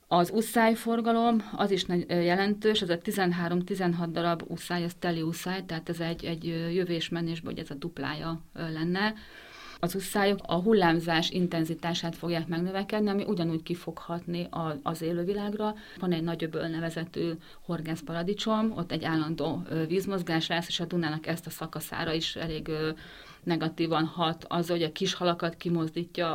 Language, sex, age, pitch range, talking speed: Hungarian, female, 40-59, 160-180 Hz, 140 wpm